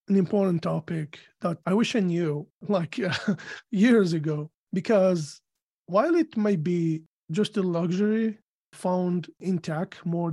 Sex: male